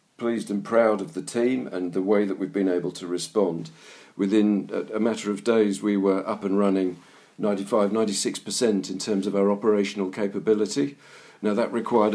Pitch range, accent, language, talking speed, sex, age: 95-110 Hz, British, English, 185 wpm, male, 50-69